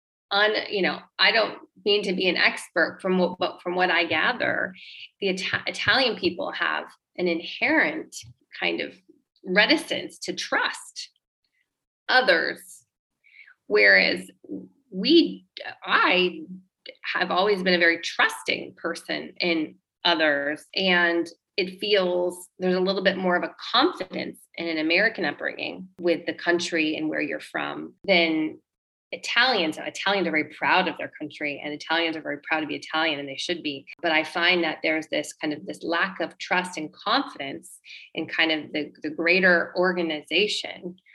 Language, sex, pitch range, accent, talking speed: English, female, 165-210 Hz, American, 155 wpm